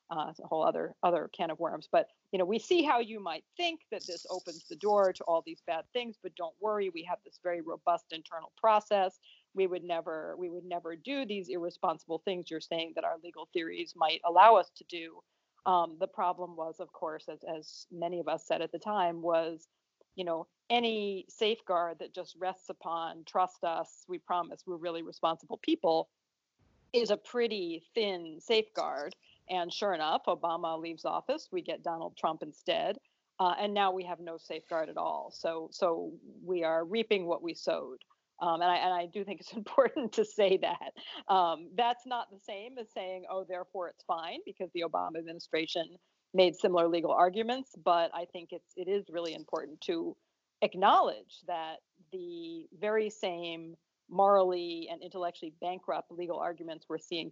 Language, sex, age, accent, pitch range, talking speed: English, female, 40-59, American, 165-210 Hz, 185 wpm